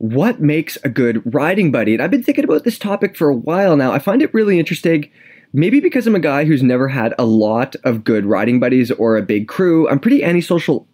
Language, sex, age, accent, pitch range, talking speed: English, male, 20-39, American, 115-175 Hz, 235 wpm